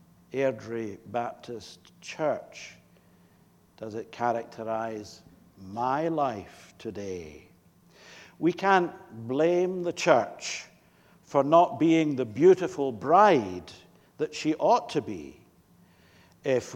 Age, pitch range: 60-79, 115-175 Hz